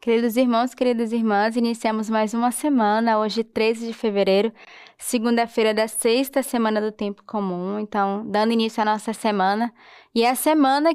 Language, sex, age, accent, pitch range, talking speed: Portuguese, female, 10-29, Brazilian, 215-250 Hz, 160 wpm